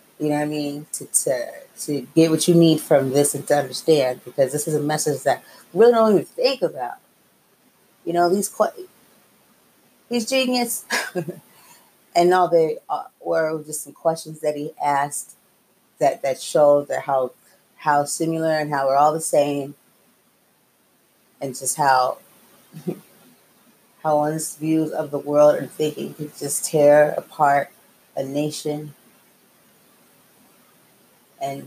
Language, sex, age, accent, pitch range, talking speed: English, female, 30-49, American, 145-165 Hz, 140 wpm